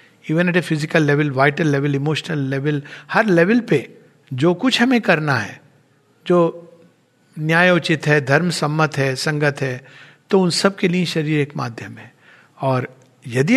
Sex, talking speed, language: male, 160 wpm, Hindi